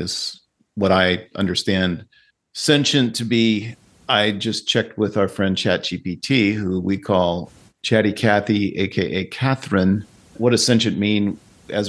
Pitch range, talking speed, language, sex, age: 95-110 Hz, 130 wpm, English, male, 40-59